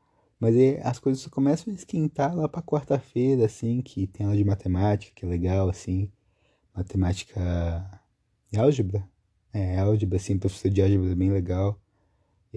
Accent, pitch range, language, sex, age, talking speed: Brazilian, 95-130 Hz, Portuguese, male, 20-39, 160 wpm